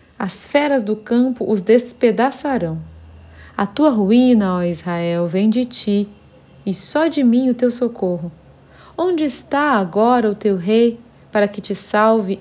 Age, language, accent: 40-59, Portuguese, Brazilian